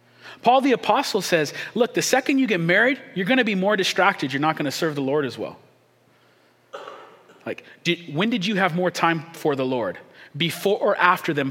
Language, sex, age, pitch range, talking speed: English, male, 40-59, 130-175 Hz, 195 wpm